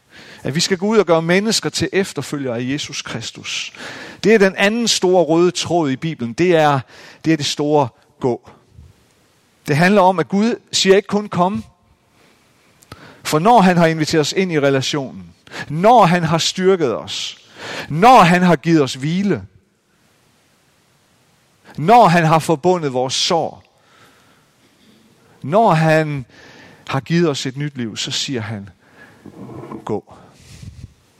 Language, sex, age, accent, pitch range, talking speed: Danish, male, 40-59, native, 125-170 Hz, 145 wpm